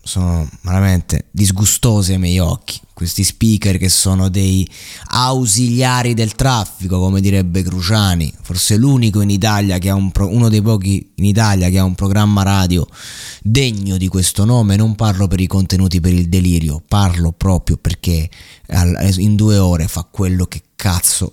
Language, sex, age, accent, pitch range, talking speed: Italian, male, 20-39, native, 95-125 Hz, 160 wpm